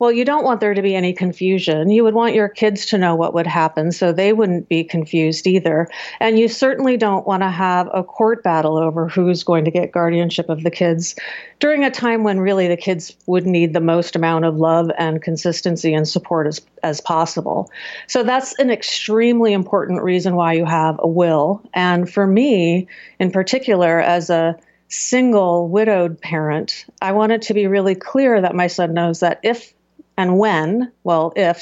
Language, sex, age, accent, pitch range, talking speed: English, female, 40-59, American, 170-230 Hz, 195 wpm